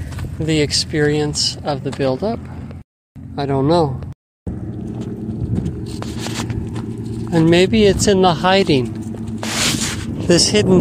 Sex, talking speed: male, 90 wpm